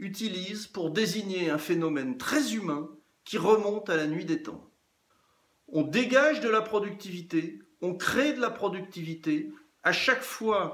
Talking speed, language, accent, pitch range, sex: 150 wpm, English, French, 165-245 Hz, male